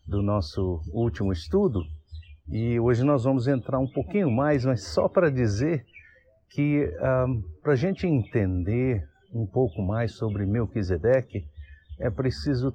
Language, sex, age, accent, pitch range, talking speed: Portuguese, male, 60-79, Brazilian, 100-135 Hz, 135 wpm